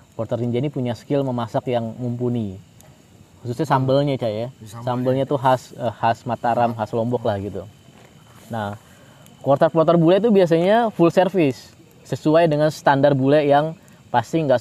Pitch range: 115-145 Hz